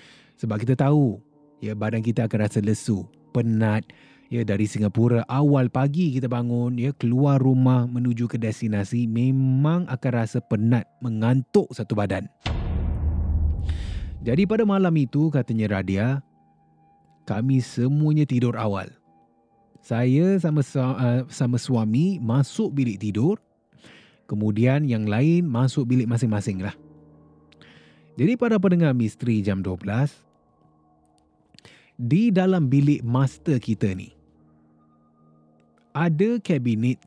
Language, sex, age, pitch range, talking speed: Malay, male, 20-39, 95-135 Hz, 110 wpm